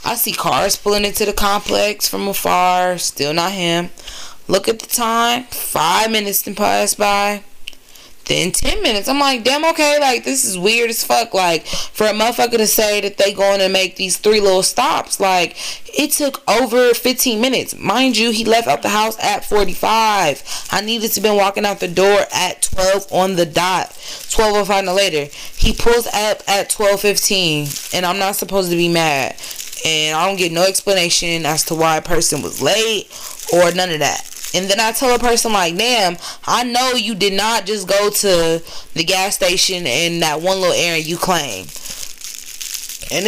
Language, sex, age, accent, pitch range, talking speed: English, female, 20-39, American, 180-220 Hz, 185 wpm